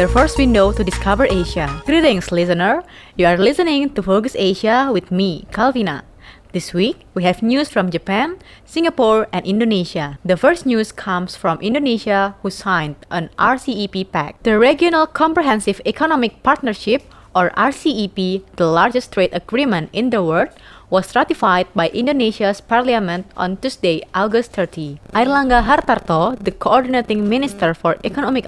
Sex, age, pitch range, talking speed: female, 20-39, 180-245 Hz, 140 wpm